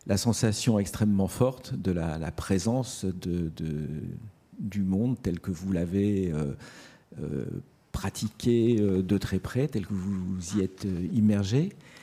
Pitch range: 95-115 Hz